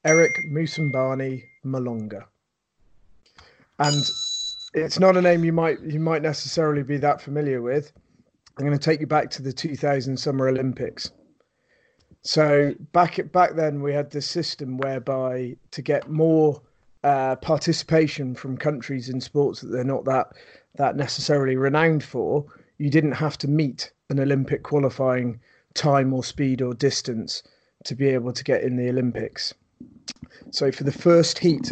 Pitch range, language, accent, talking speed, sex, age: 130-155 Hz, English, British, 150 wpm, male, 30-49